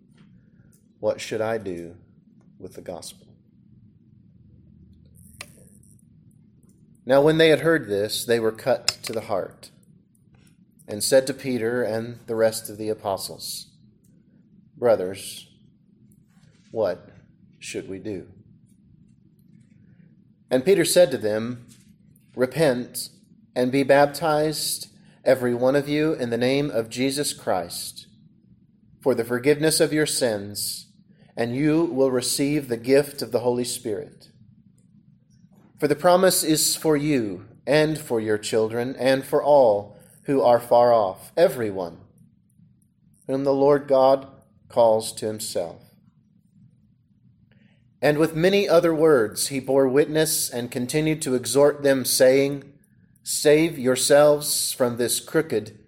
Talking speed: 120 wpm